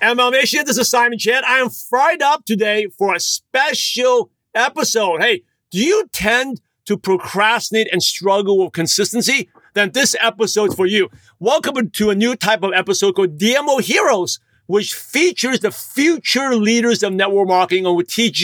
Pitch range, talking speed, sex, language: 180-230 Hz, 165 wpm, male, English